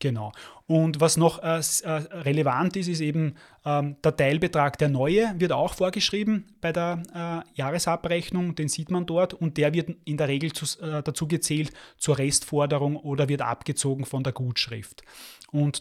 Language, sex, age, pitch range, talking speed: German, male, 30-49, 145-170 Hz, 165 wpm